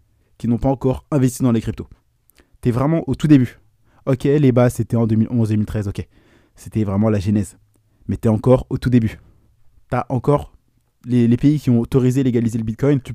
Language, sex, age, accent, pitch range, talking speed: French, male, 20-39, French, 110-130 Hz, 205 wpm